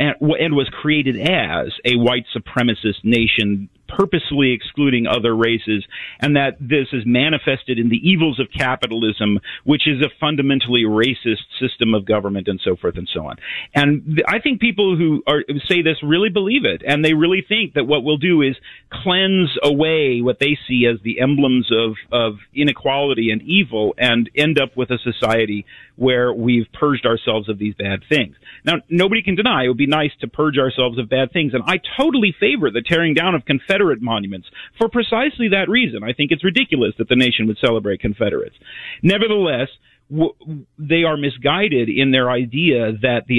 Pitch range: 120-165 Hz